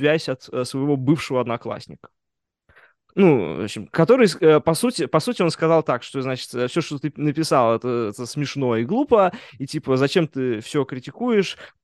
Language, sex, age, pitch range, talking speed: Russian, male, 20-39, 125-165 Hz, 160 wpm